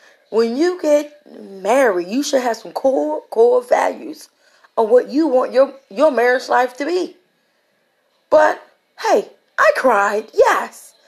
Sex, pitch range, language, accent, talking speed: female, 230-300 Hz, English, American, 140 wpm